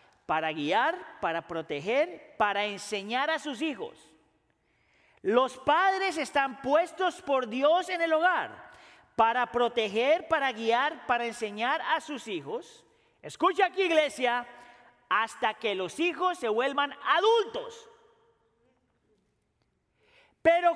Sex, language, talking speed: male, Spanish, 110 wpm